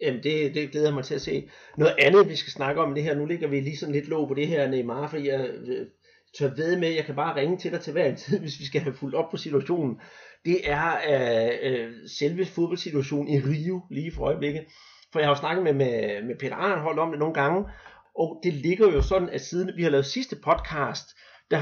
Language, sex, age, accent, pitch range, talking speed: Danish, male, 30-49, native, 140-185 Hz, 240 wpm